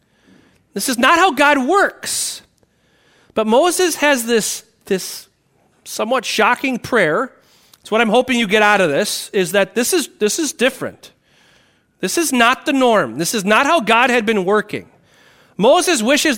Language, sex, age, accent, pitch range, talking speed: English, male, 40-59, American, 200-280 Hz, 160 wpm